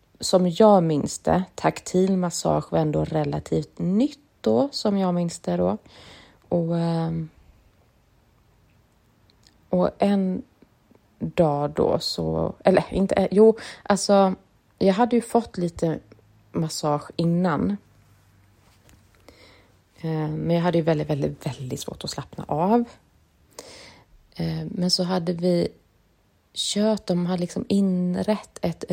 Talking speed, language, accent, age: 110 wpm, English, Swedish, 30-49